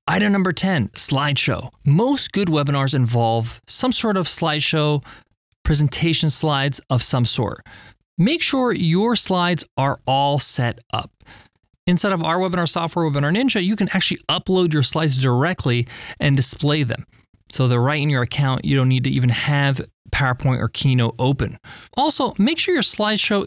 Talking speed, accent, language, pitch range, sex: 160 wpm, American, English, 125-175 Hz, male